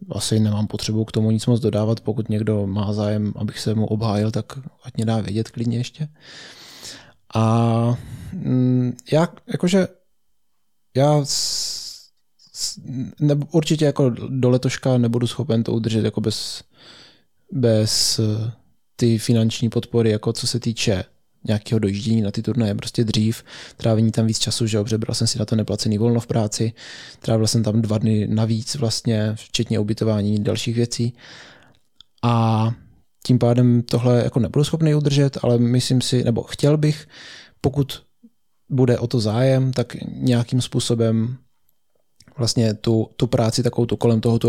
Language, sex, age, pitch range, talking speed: Czech, male, 20-39, 110-125 Hz, 150 wpm